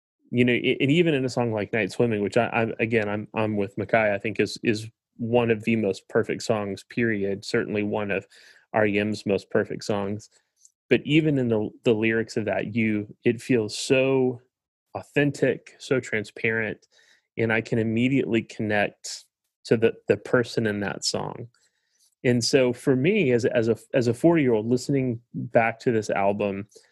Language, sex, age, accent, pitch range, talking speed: English, male, 30-49, American, 105-120 Hz, 180 wpm